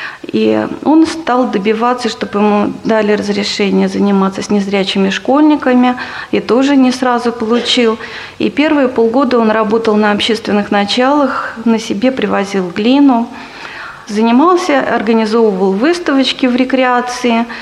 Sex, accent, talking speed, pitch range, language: female, native, 115 wpm, 215-250 Hz, Russian